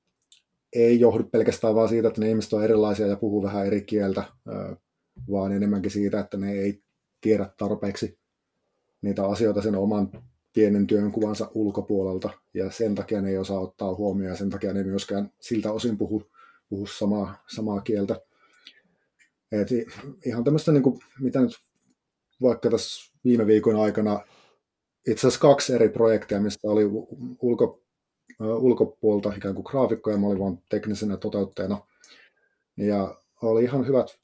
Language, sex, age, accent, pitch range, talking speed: Finnish, male, 30-49, native, 100-115 Hz, 145 wpm